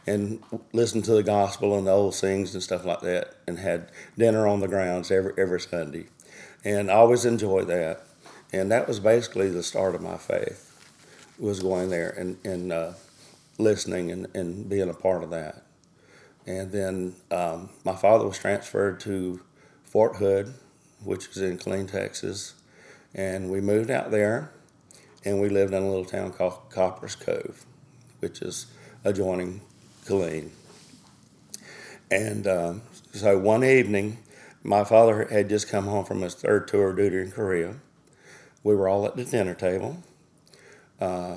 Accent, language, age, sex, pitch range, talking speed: American, English, 40-59, male, 95-105 Hz, 160 wpm